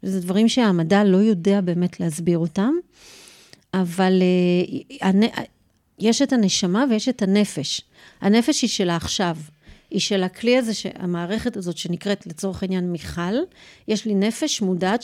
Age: 40-59